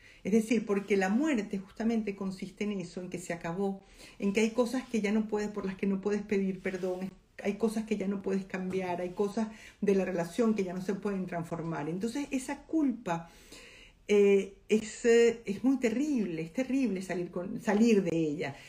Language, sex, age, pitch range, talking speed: Spanish, female, 50-69, 185-225 Hz, 200 wpm